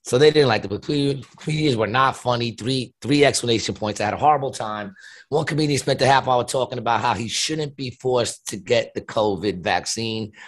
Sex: male